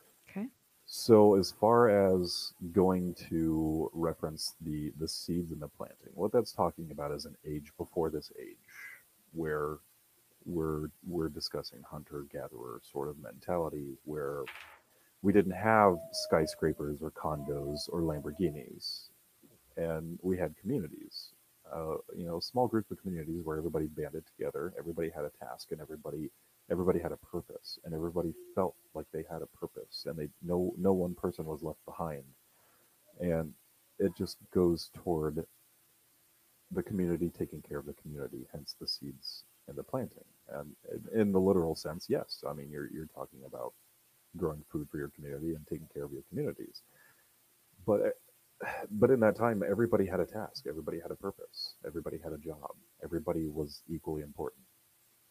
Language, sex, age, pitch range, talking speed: English, male, 40-59, 75-105 Hz, 155 wpm